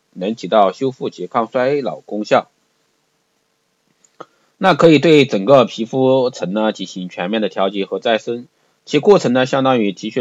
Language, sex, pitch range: Chinese, male, 105-150 Hz